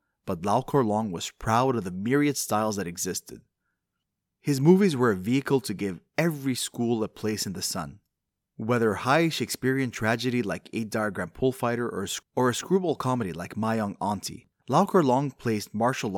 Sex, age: male, 20-39